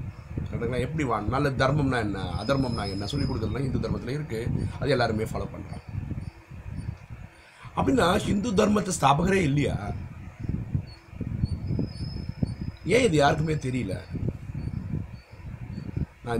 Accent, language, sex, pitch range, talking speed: native, Tamil, male, 105-130 Hz, 95 wpm